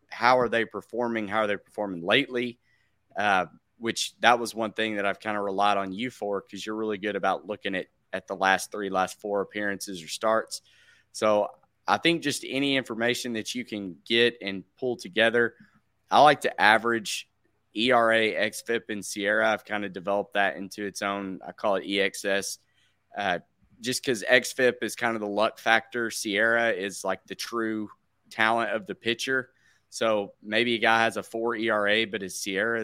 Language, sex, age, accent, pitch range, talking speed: English, male, 30-49, American, 100-115 Hz, 185 wpm